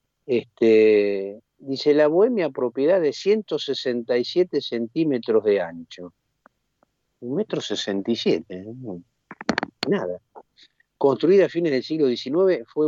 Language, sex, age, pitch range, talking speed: Spanish, male, 50-69, 110-155 Hz, 100 wpm